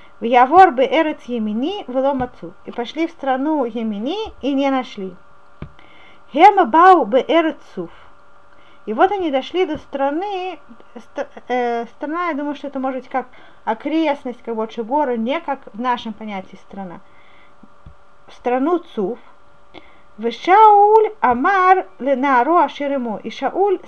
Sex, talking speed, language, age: female, 95 wpm, Russian, 30-49